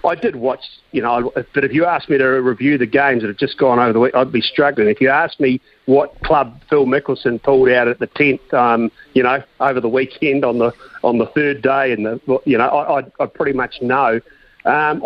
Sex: male